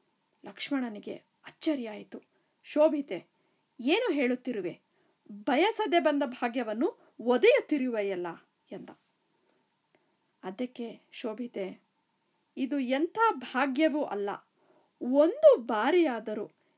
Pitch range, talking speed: 235-315 Hz, 65 wpm